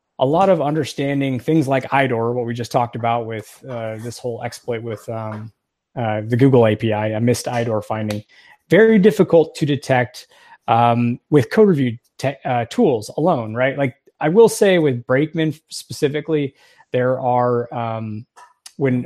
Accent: American